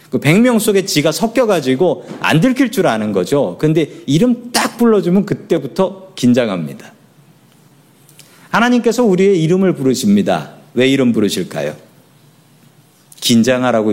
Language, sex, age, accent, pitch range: Korean, male, 40-59, native, 145-215 Hz